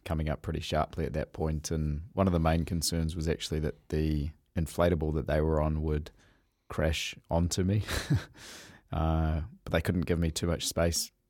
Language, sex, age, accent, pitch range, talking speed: English, male, 20-39, Australian, 75-85 Hz, 185 wpm